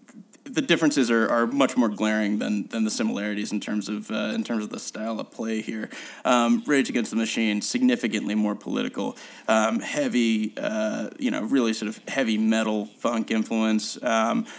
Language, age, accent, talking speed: English, 30-49, American, 180 wpm